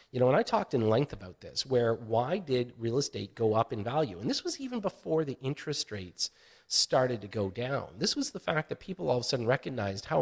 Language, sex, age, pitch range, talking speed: English, male, 40-59, 115-155 Hz, 245 wpm